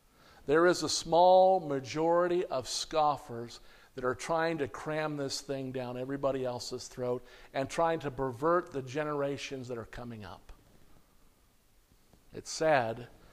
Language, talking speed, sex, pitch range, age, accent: English, 135 wpm, male, 135-160 Hz, 50-69, American